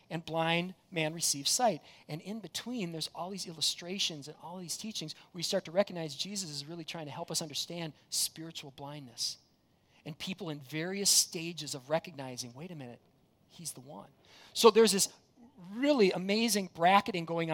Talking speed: 175 wpm